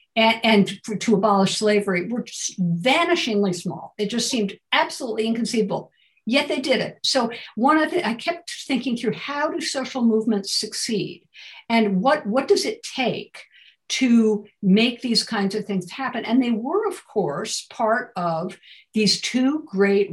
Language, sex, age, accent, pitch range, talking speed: English, female, 50-69, American, 195-255 Hz, 155 wpm